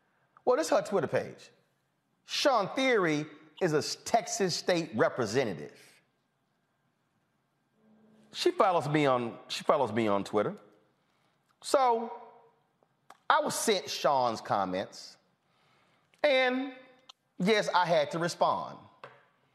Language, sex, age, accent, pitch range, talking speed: English, male, 30-49, American, 175-235 Hz, 105 wpm